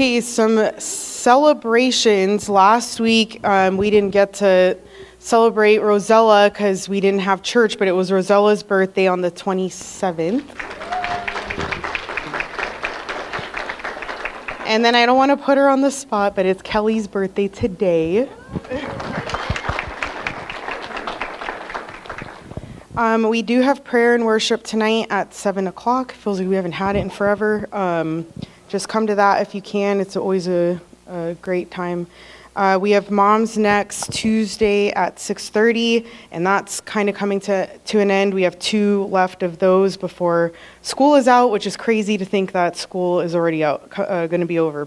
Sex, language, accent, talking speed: female, English, American, 155 wpm